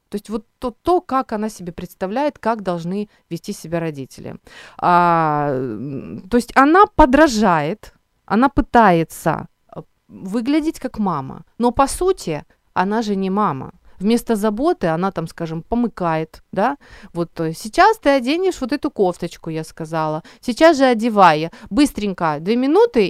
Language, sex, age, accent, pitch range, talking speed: Ukrainian, female, 30-49, native, 175-240 Hz, 140 wpm